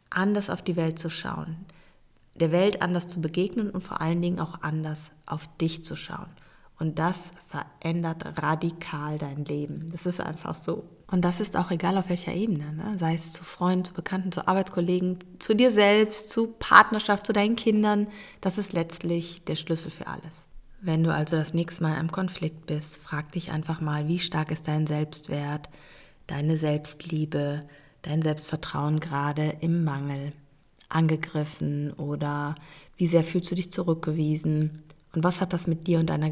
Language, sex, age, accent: German, female, 30-49, German